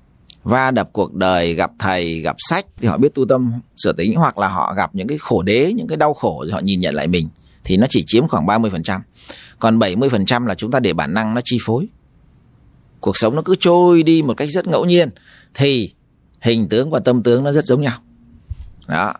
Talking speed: 220 wpm